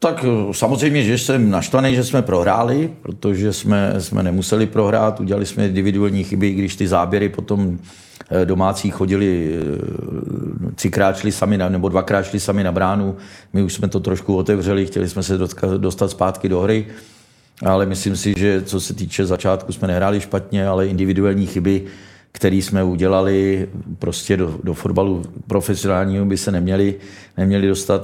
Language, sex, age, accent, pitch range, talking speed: Czech, male, 40-59, native, 95-105 Hz, 150 wpm